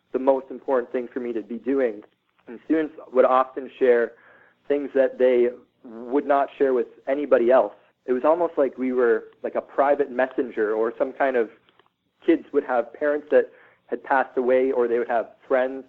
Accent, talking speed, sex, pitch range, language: American, 190 wpm, male, 125-150 Hz, English